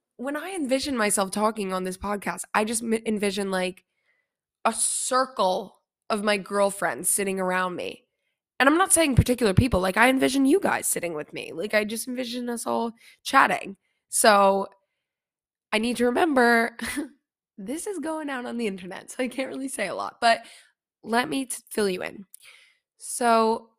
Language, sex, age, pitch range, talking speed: English, female, 20-39, 190-250 Hz, 170 wpm